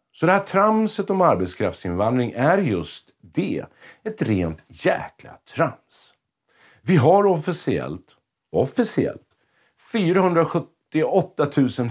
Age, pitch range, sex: 50-69, 95-150 Hz, male